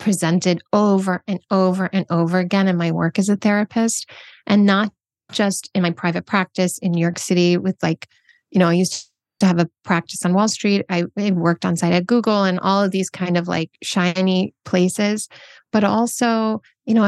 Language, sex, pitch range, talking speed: English, female, 175-205 Hz, 195 wpm